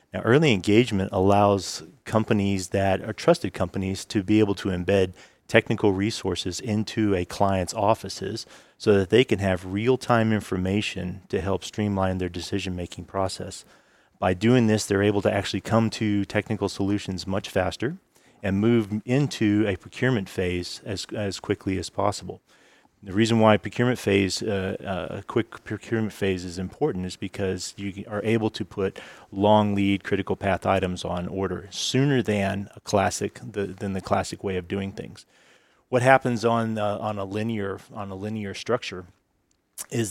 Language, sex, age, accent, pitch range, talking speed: English, male, 30-49, American, 95-110 Hz, 165 wpm